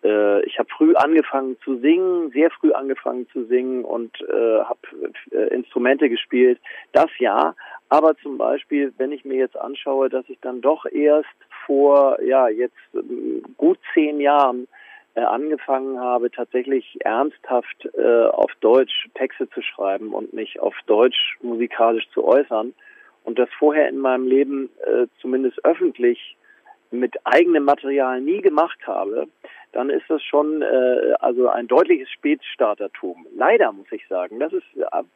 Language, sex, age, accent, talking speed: German, male, 40-59, German, 145 wpm